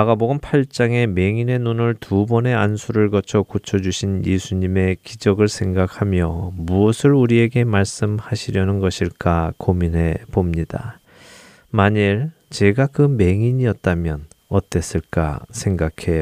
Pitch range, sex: 90-120 Hz, male